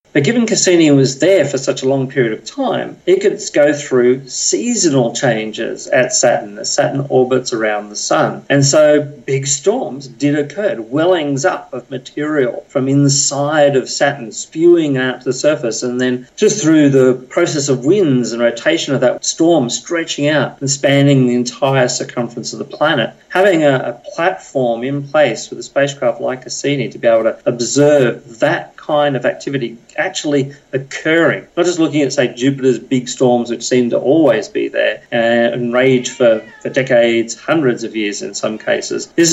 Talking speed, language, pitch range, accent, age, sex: 175 wpm, English, 125-160 Hz, Australian, 40-59, male